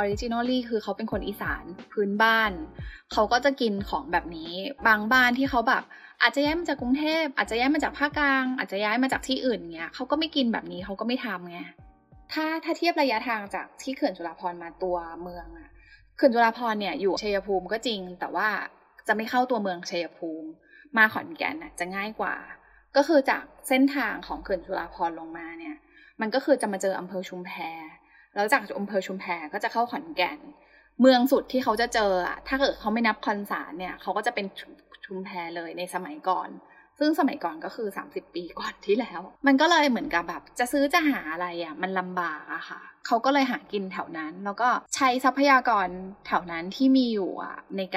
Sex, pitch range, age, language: female, 185-265 Hz, 10-29, Thai